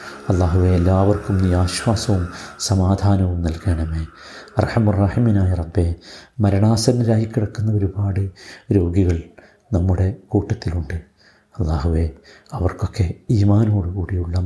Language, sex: Malayalam, male